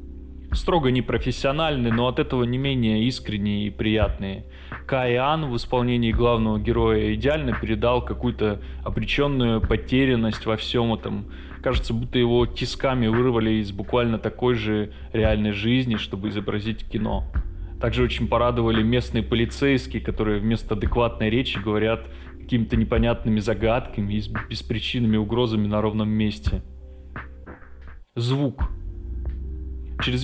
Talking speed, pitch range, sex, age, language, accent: 115 wpm, 95-120 Hz, male, 20-39, Russian, native